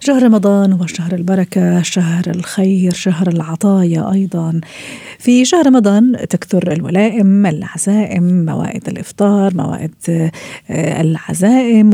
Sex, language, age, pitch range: female, Arabic, 40-59, 170-205 Hz